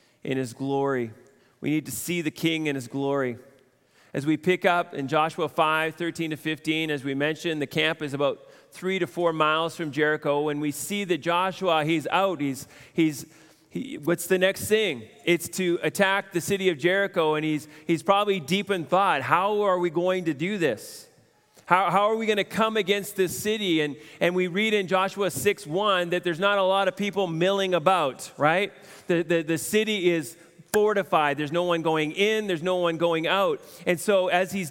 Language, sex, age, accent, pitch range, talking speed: English, male, 30-49, American, 155-195 Hz, 200 wpm